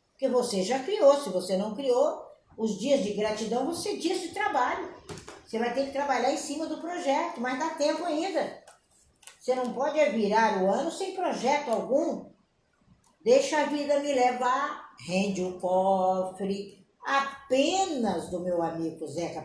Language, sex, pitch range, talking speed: Portuguese, female, 185-275 Hz, 160 wpm